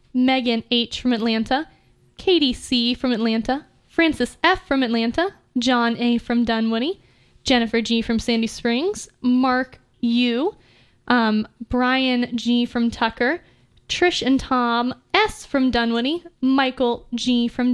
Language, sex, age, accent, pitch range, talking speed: English, female, 10-29, American, 235-270 Hz, 125 wpm